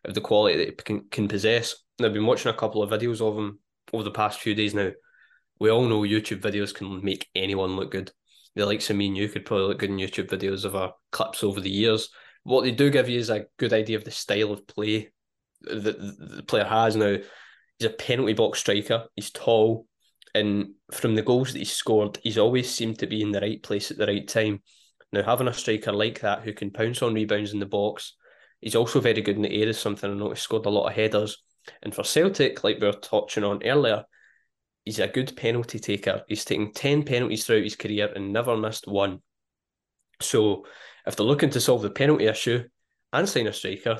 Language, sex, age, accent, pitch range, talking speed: English, male, 10-29, British, 100-115 Hz, 230 wpm